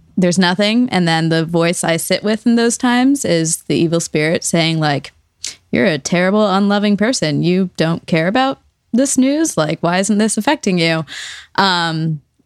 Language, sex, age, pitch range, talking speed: English, female, 20-39, 165-215 Hz, 175 wpm